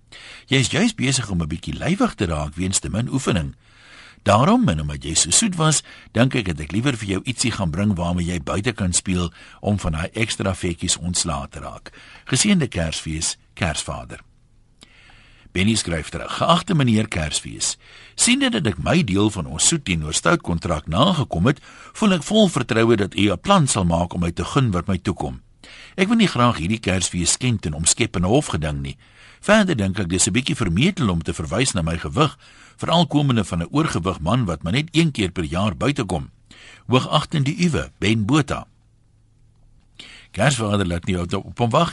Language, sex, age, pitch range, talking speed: Dutch, male, 60-79, 85-130 Hz, 190 wpm